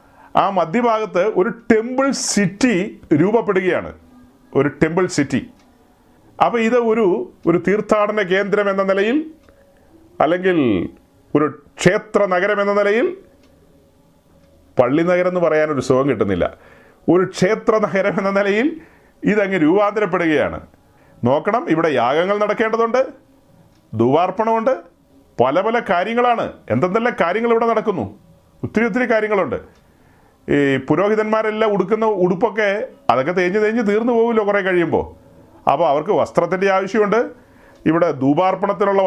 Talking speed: 95 wpm